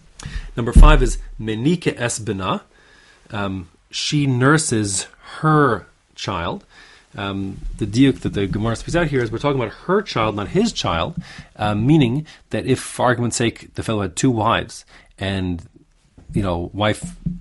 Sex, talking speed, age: male, 150 wpm, 30-49